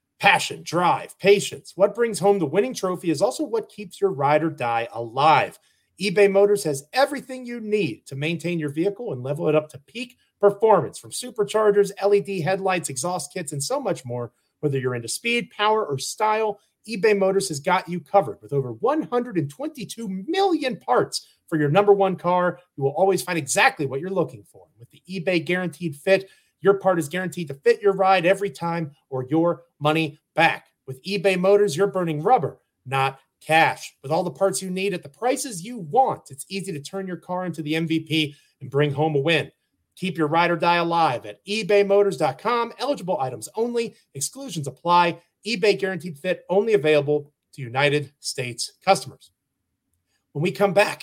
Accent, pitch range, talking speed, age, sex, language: American, 150-200 Hz, 180 wpm, 30-49, male, English